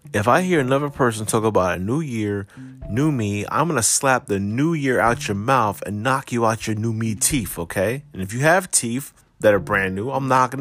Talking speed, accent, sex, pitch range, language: 240 wpm, American, male, 115-145 Hz, English